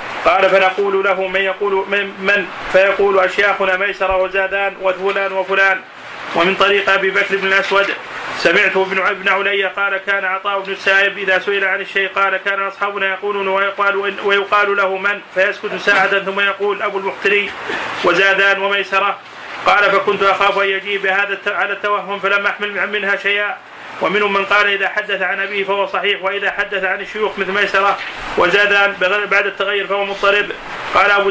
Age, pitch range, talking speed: 30-49, 195-205 Hz, 155 wpm